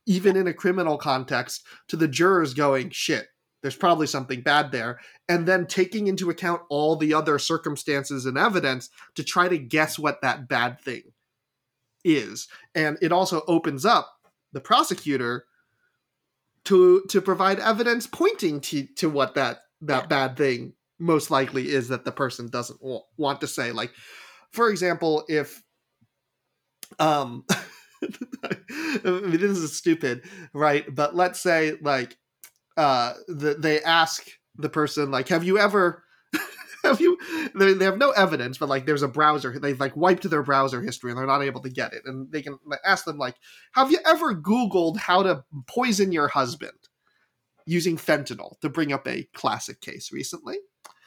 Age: 30-49